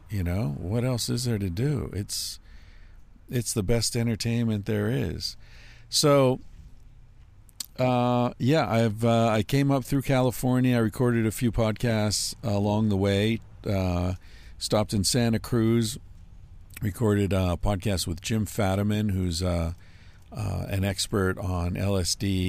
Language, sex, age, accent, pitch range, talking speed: English, male, 50-69, American, 90-110 Hz, 140 wpm